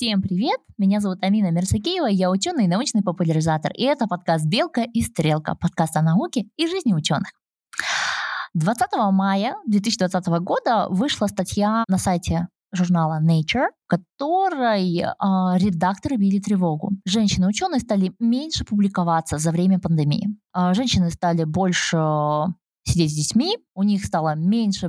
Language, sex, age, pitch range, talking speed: Russian, female, 20-39, 175-210 Hz, 135 wpm